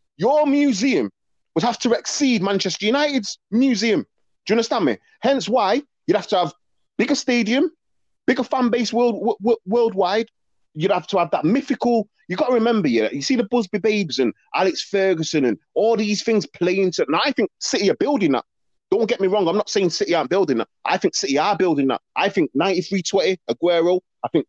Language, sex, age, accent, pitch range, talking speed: English, male, 30-49, British, 165-230 Hz, 205 wpm